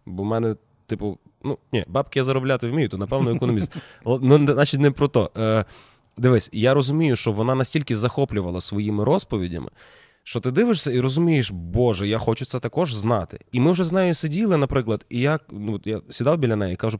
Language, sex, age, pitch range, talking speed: Ukrainian, male, 20-39, 110-145 Hz, 190 wpm